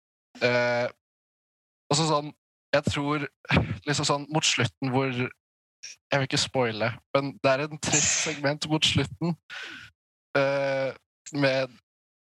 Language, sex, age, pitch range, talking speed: English, male, 20-39, 130-160 Hz, 120 wpm